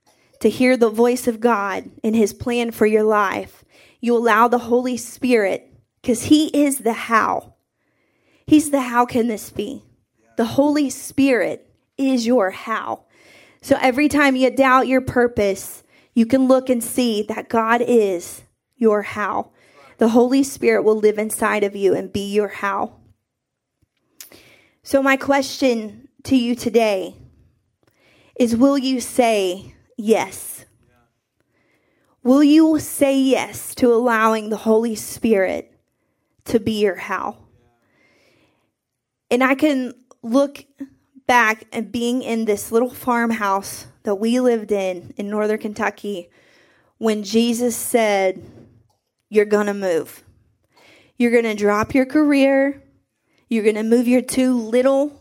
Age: 20-39